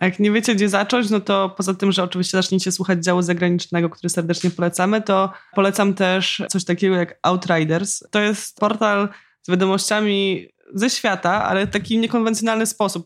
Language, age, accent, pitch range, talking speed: Polish, 20-39, native, 165-190 Hz, 170 wpm